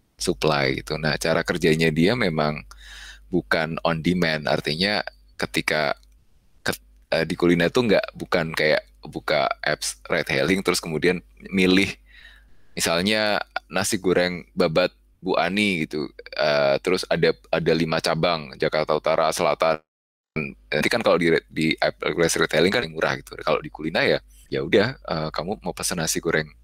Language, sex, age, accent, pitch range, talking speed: Indonesian, male, 20-39, native, 80-90 Hz, 150 wpm